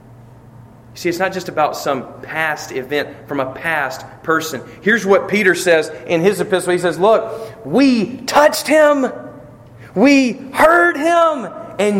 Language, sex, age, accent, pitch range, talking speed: English, male, 40-59, American, 120-200 Hz, 145 wpm